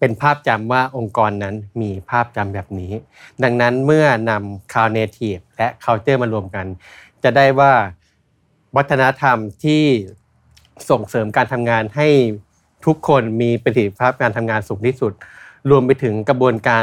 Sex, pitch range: male, 110-135 Hz